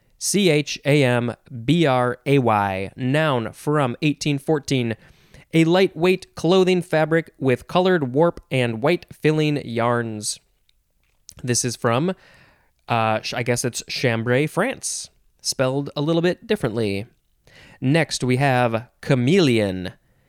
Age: 20-39